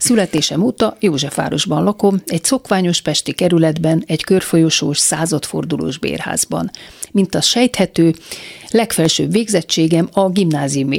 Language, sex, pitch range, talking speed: Hungarian, female, 155-200 Hz, 105 wpm